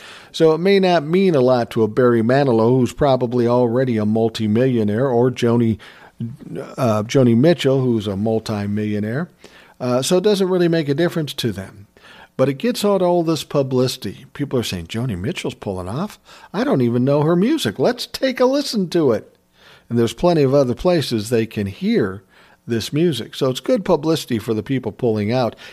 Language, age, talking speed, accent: English, 50-69, 185 wpm, American